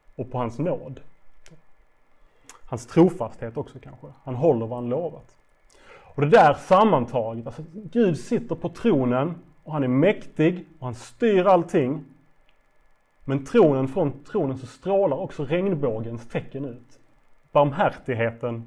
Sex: male